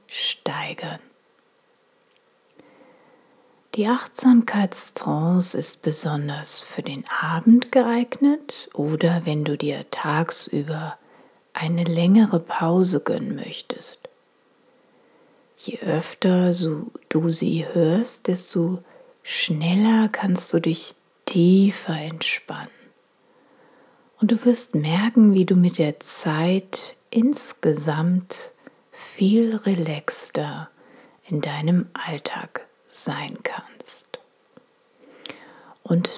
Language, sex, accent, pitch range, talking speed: German, female, German, 165-245 Hz, 80 wpm